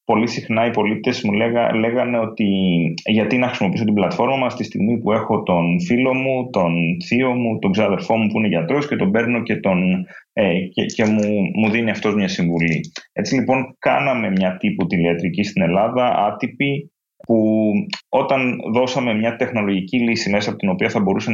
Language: Greek